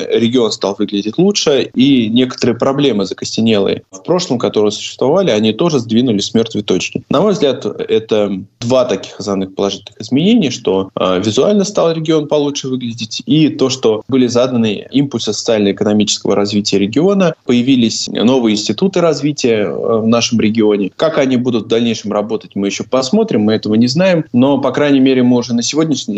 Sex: male